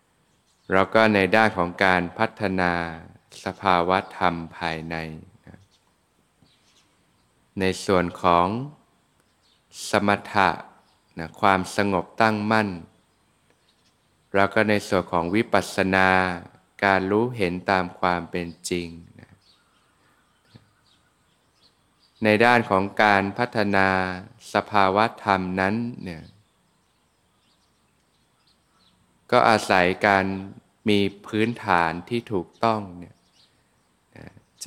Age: 20-39